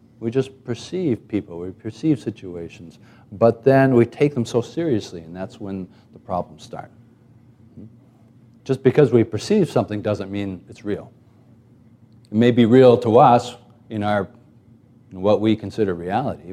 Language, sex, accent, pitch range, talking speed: English, male, American, 105-120 Hz, 150 wpm